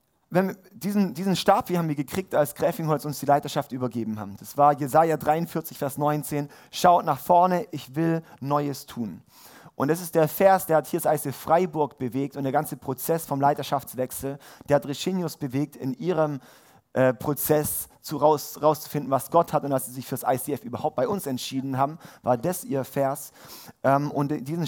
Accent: German